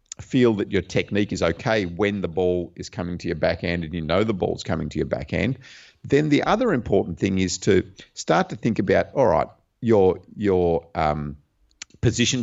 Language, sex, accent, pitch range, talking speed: English, male, Australian, 90-115 Hz, 195 wpm